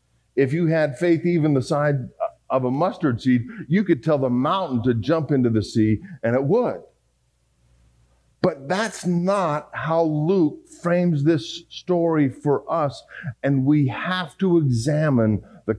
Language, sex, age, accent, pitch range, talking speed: English, male, 50-69, American, 120-165 Hz, 150 wpm